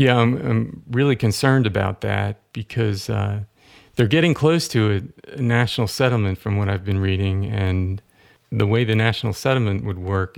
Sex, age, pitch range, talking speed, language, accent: male, 40-59, 95-110 Hz, 175 wpm, English, American